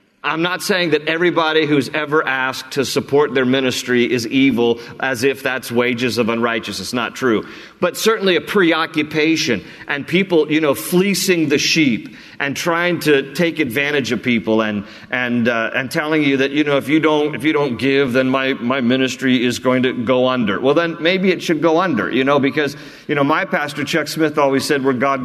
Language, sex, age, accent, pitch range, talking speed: English, male, 40-59, American, 130-160 Hz, 205 wpm